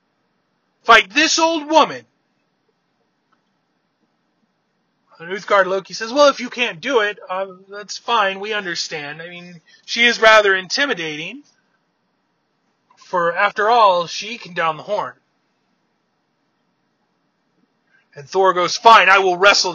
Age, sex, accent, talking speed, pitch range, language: 30-49, male, American, 120 wpm, 170-225 Hz, English